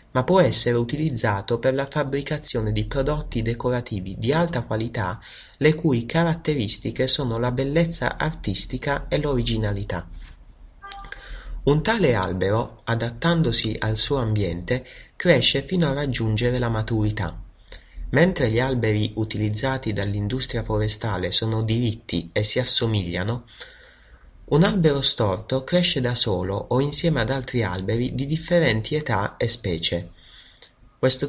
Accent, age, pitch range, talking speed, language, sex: Italian, 30-49, 105-140 Hz, 120 wpm, English, male